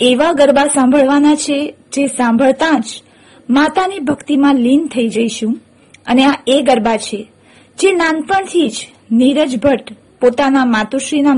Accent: native